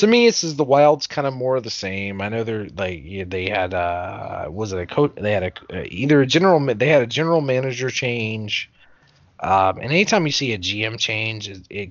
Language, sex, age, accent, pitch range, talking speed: English, male, 30-49, American, 95-140 Hz, 230 wpm